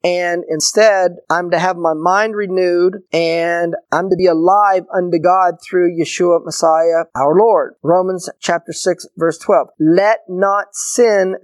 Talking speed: 145 wpm